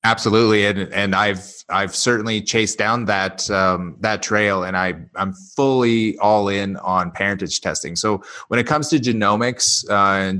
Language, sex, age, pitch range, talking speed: English, male, 20-39, 90-105 Hz, 165 wpm